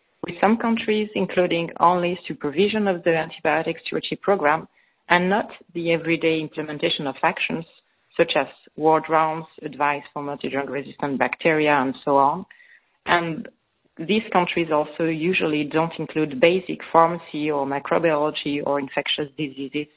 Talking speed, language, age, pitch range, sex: 130 wpm, English, 40-59, 145-175 Hz, female